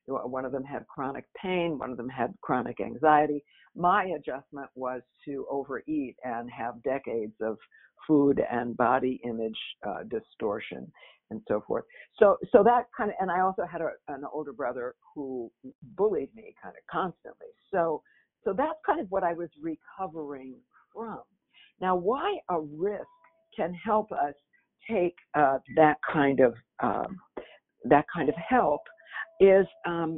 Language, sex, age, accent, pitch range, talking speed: English, female, 60-79, American, 140-215 Hz, 155 wpm